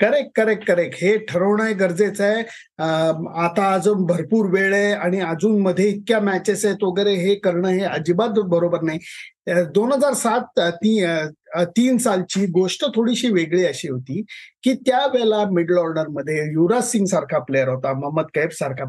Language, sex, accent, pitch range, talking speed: Marathi, male, native, 175-230 Hz, 150 wpm